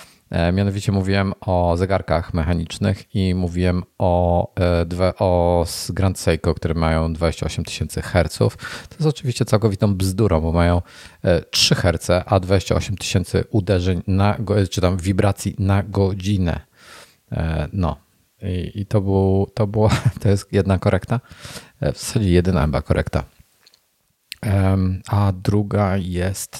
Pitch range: 90-100 Hz